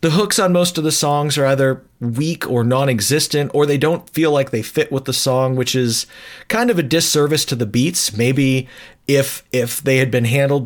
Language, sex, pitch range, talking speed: English, male, 120-145 Hz, 215 wpm